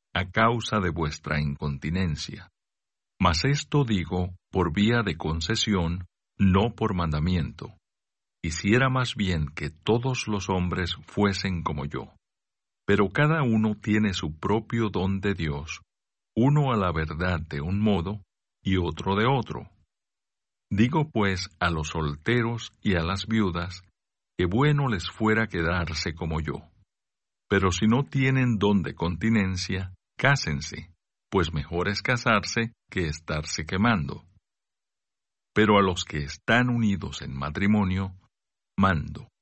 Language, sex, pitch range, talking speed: Spanish, male, 85-110 Hz, 130 wpm